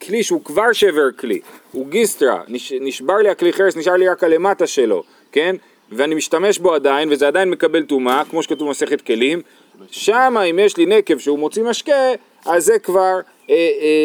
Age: 40-59